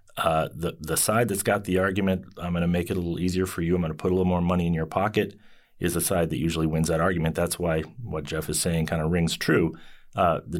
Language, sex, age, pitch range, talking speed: English, male, 30-49, 80-100 Hz, 275 wpm